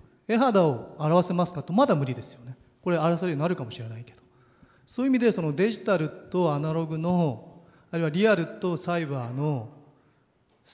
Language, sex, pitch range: Japanese, male, 145-205 Hz